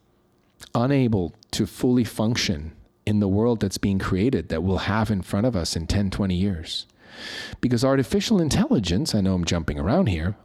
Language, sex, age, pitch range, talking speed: English, male, 40-59, 95-115 Hz, 170 wpm